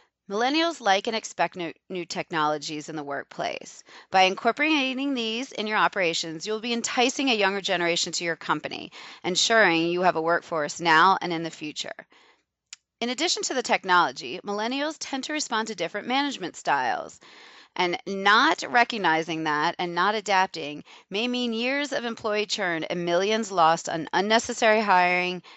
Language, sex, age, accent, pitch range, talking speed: English, female, 30-49, American, 170-230 Hz, 155 wpm